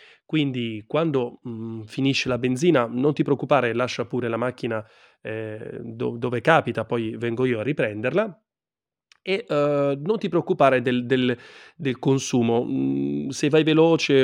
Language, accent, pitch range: Italian, native, 115-140 Hz